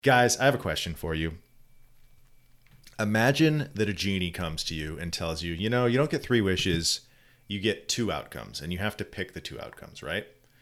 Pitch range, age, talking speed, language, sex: 80-110 Hz, 30-49, 210 wpm, English, male